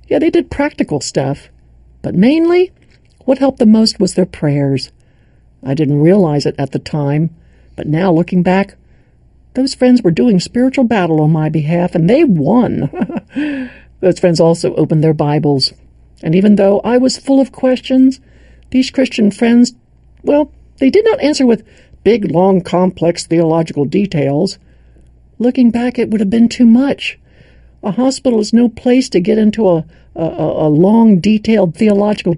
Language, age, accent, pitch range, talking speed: English, 60-79, American, 150-245 Hz, 160 wpm